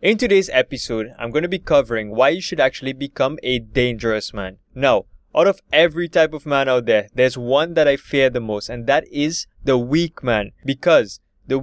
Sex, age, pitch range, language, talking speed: male, 20-39, 115-145 Hz, English, 205 wpm